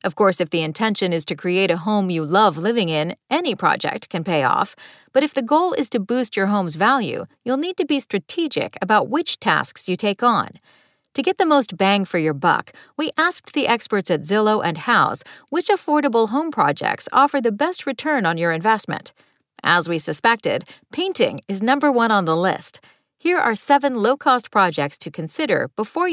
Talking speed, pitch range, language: 195 wpm, 180-275 Hz, English